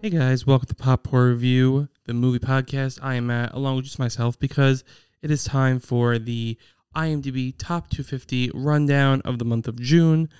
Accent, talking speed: American, 185 wpm